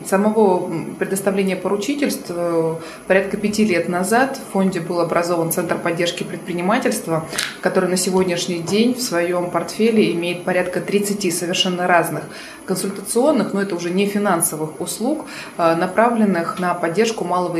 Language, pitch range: Russian, 170-200 Hz